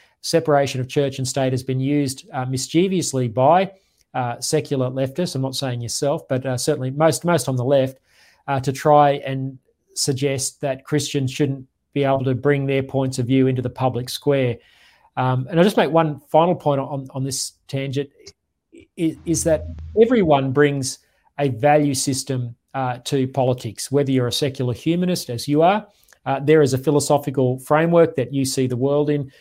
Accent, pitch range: Australian, 130-150 Hz